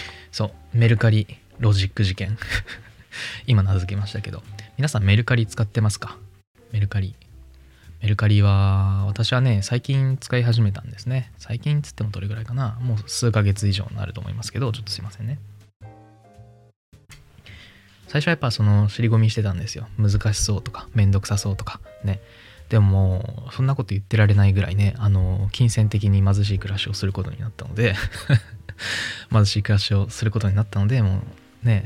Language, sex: Japanese, male